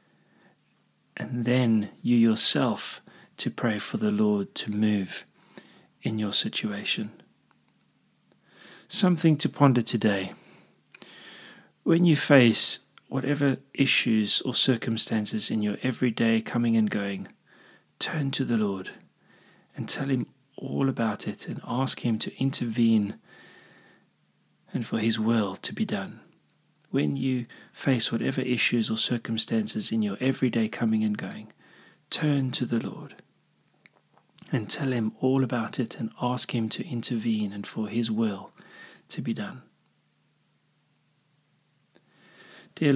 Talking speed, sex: 125 wpm, male